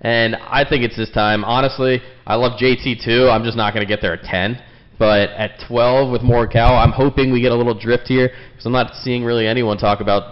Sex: male